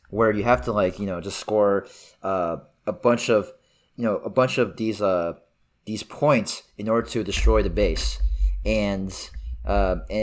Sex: male